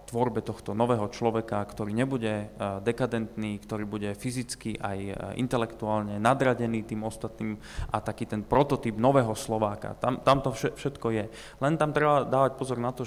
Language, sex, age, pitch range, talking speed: Slovak, male, 20-39, 110-130 Hz, 150 wpm